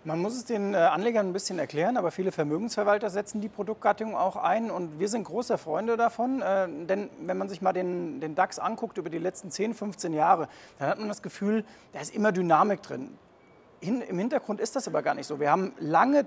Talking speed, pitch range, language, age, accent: 215 wpm, 175-215 Hz, German, 40-59, German